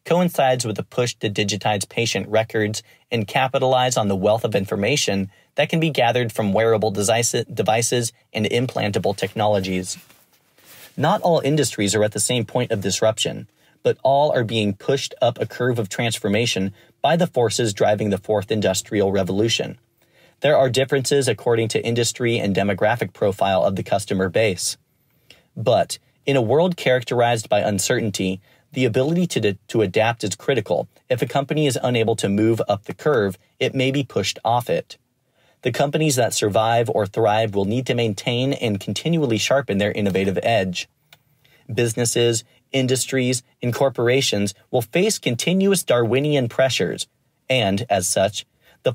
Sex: male